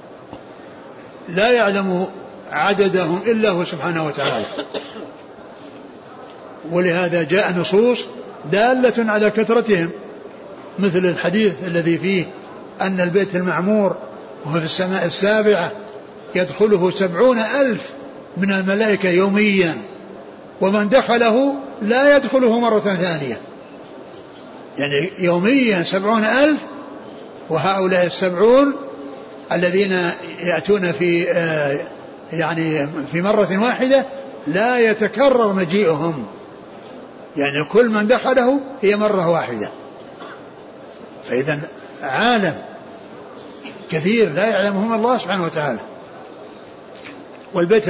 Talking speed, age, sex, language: 85 wpm, 60-79, male, Arabic